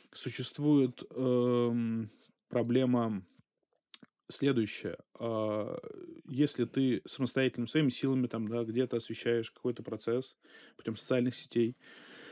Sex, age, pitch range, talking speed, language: male, 20-39, 120-150 Hz, 95 wpm, Russian